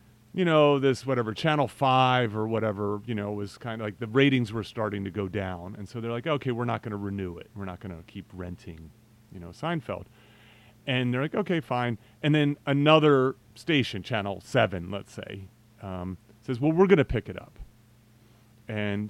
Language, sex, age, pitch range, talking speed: English, male, 30-49, 110-135 Hz, 200 wpm